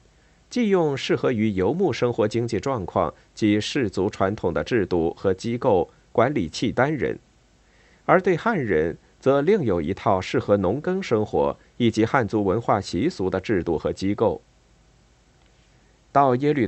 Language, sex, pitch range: Chinese, male, 100-130 Hz